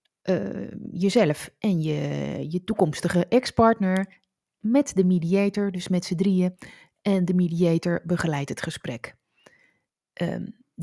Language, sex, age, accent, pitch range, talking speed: Dutch, female, 30-49, Dutch, 170-205 Hz, 115 wpm